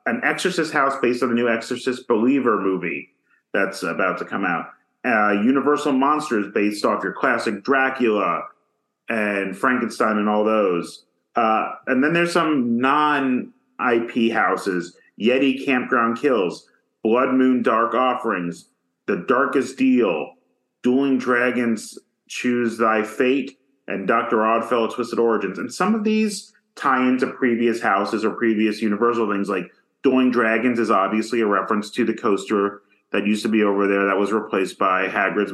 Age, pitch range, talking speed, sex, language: 30-49, 105-130 Hz, 150 wpm, male, English